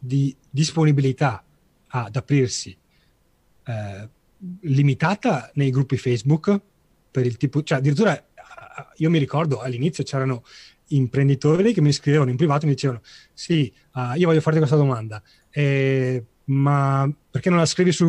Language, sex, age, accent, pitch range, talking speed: Italian, male, 30-49, native, 125-150 Hz, 135 wpm